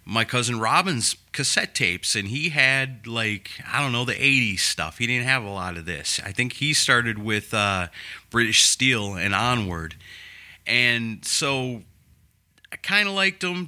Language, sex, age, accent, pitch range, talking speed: English, male, 30-49, American, 100-125 Hz, 170 wpm